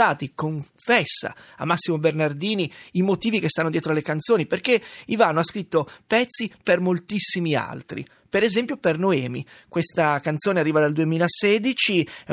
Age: 30-49